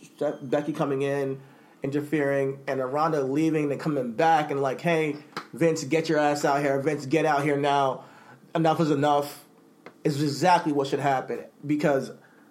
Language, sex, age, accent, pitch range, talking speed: English, male, 30-49, American, 140-170 Hz, 160 wpm